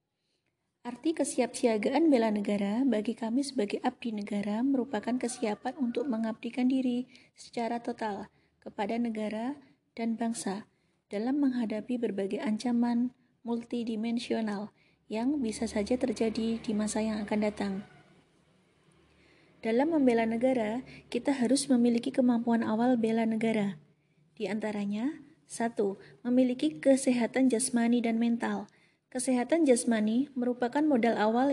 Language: Indonesian